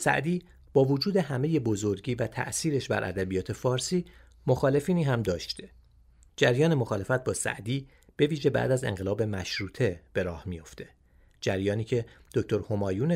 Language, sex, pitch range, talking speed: Persian, male, 95-135 Hz, 135 wpm